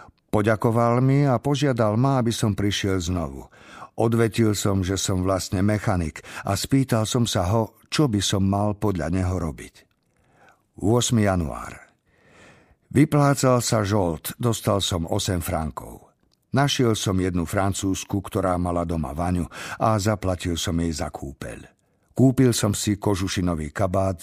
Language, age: Slovak, 50-69